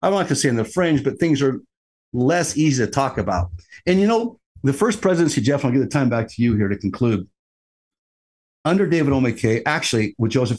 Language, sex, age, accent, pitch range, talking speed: English, male, 50-69, American, 110-145 Hz, 230 wpm